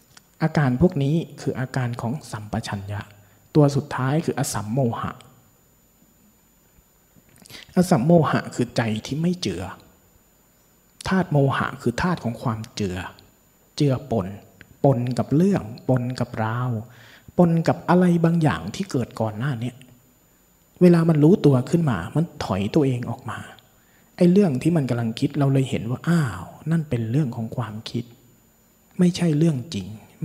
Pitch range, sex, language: 115-155 Hz, male, Thai